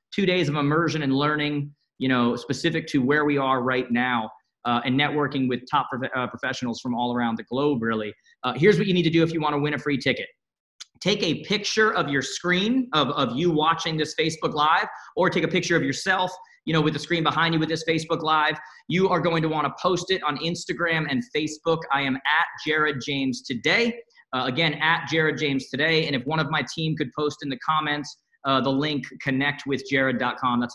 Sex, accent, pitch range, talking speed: male, American, 130-165 Hz, 215 wpm